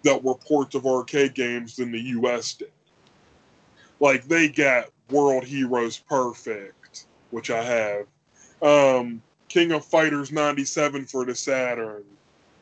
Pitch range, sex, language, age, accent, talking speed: 120-155 Hz, female, English, 20-39, American, 130 wpm